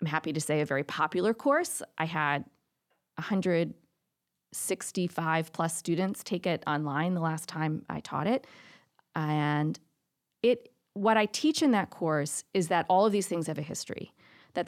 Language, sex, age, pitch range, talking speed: English, female, 40-59, 160-205 Hz, 165 wpm